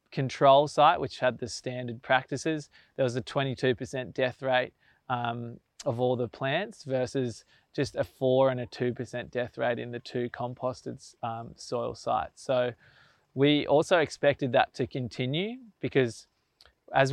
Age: 20-39